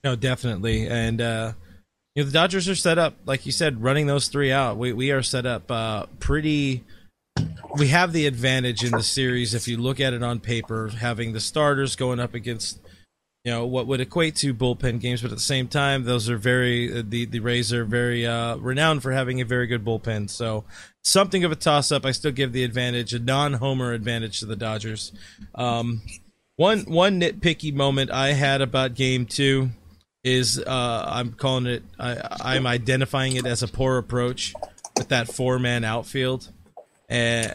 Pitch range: 120-140 Hz